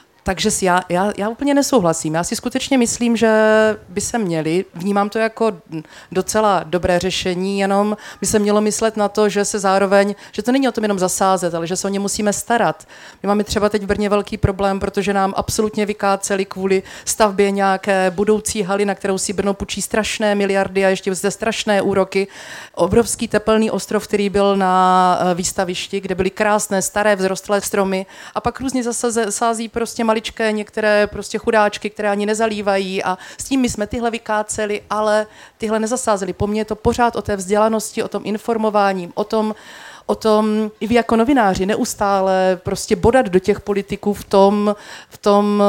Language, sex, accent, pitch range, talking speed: Czech, female, native, 185-215 Hz, 180 wpm